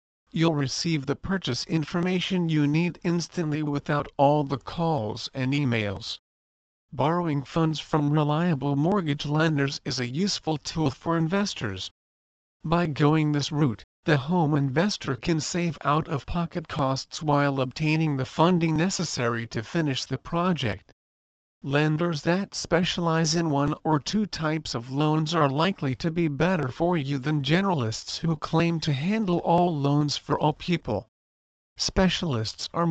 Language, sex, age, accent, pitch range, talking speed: English, male, 50-69, American, 135-165 Hz, 140 wpm